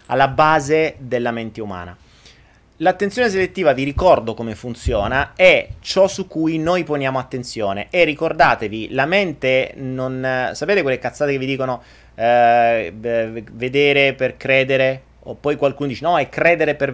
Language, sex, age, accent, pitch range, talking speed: Italian, male, 30-49, native, 115-155 Hz, 145 wpm